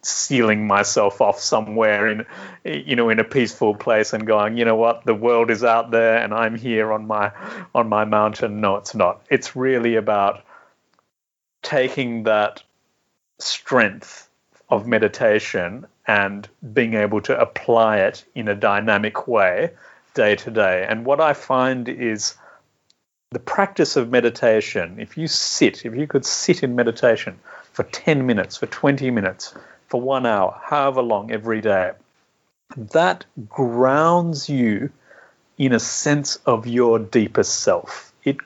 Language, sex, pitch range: English, male, 110-135 Hz